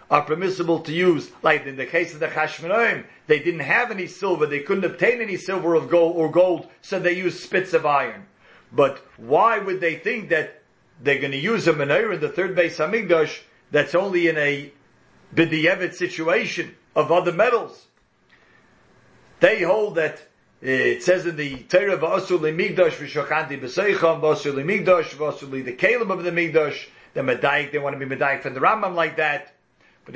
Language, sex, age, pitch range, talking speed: English, male, 50-69, 150-185 Hz, 175 wpm